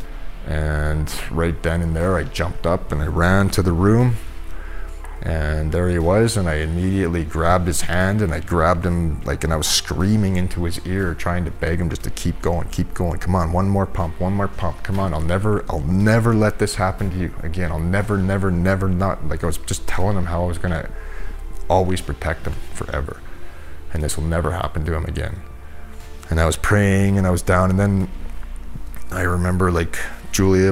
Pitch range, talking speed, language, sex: 80-95 Hz, 210 wpm, English, male